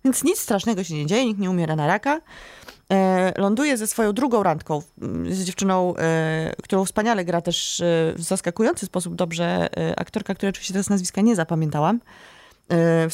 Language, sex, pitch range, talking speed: Polish, female, 170-220 Hz, 155 wpm